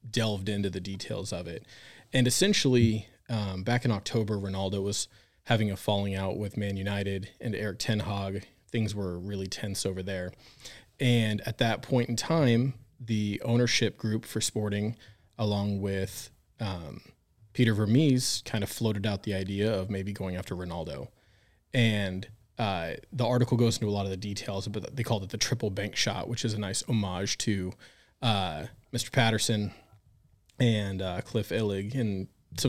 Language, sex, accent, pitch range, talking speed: English, male, American, 100-115 Hz, 170 wpm